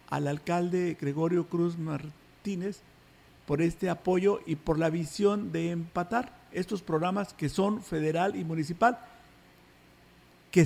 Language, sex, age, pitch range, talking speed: Spanish, male, 50-69, 140-185 Hz, 125 wpm